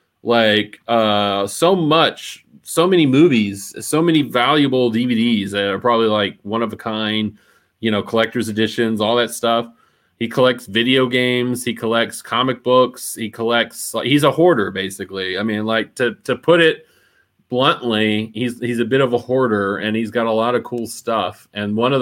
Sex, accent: male, American